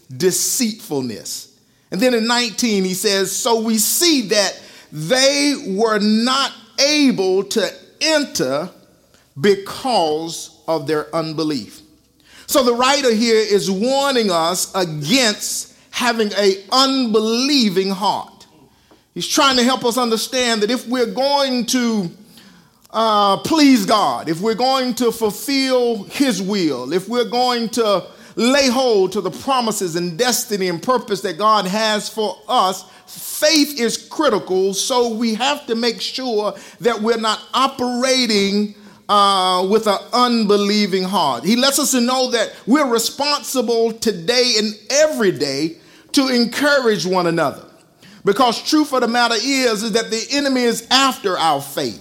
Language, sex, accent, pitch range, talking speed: English, male, American, 190-250 Hz, 135 wpm